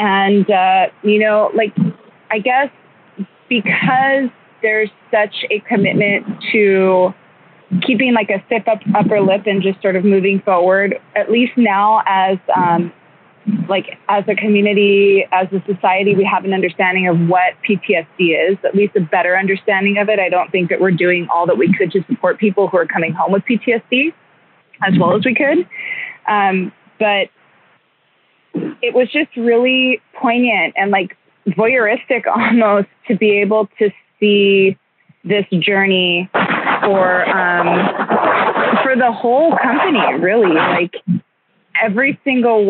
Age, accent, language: 20-39, American, English